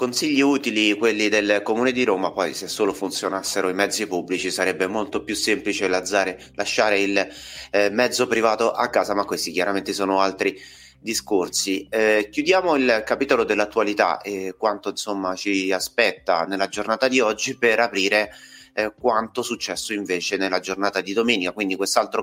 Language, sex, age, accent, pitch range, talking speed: Italian, male, 30-49, native, 95-110 Hz, 150 wpm